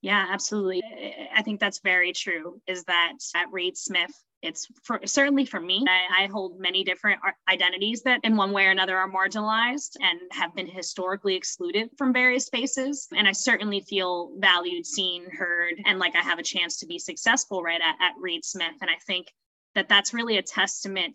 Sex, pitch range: female, 180-230 Hz